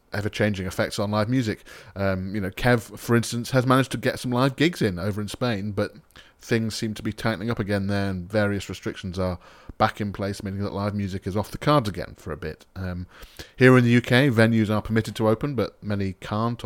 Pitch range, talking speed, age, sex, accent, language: 95-115 Hz, 225 wpm, 30-49, male, British, English